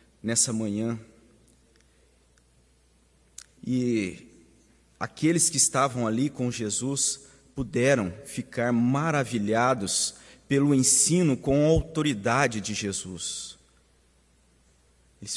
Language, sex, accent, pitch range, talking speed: Portuguese, male, Brazilian, 110-140 Hz, 75 wpm